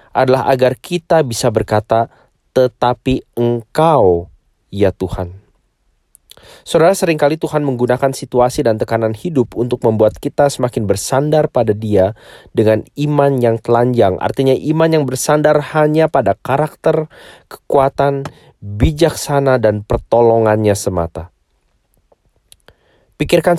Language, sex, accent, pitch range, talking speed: English, male, Indonesian, 105-140 Hz, 105 wpm